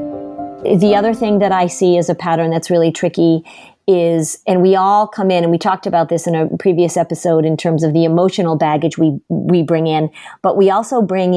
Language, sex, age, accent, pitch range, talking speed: English, female, 40-59, American, 170-205 Hz, 215 wpm